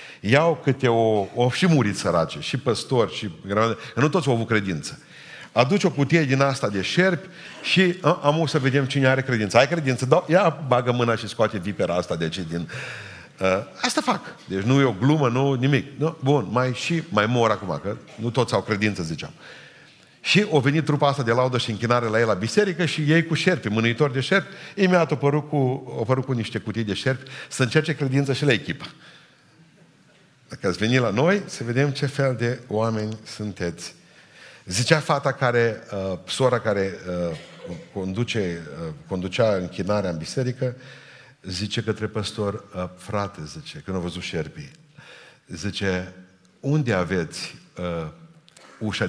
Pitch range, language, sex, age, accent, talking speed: 105-150 Hz, Romanian, male, 50-69, native, 175 wpm